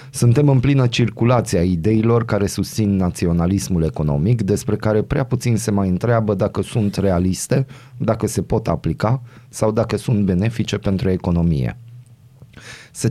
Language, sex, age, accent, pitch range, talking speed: Romanian, male, 30-49, native, 95-120 Hz, 140 wpm